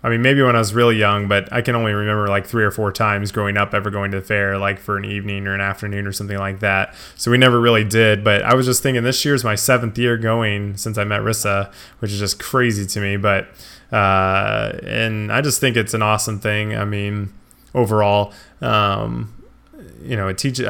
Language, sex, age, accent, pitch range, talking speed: English, male, 20-39, American, 100-115 Hz, 230 wpm